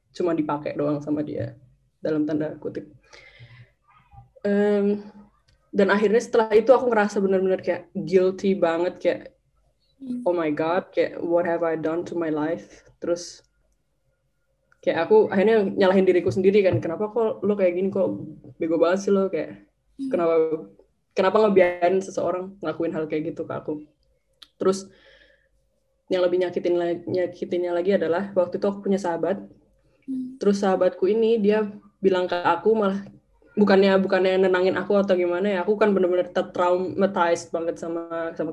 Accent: native